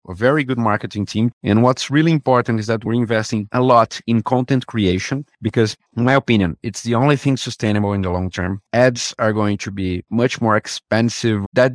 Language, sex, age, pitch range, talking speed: English, male, 40-59, 100-130 Hz, 205 wpm